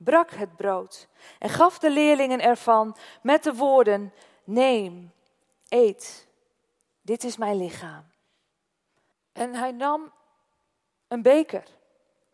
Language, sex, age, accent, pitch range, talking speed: Dutch, female, 40-59, Dutch, 225-300 Hz, 105 wpm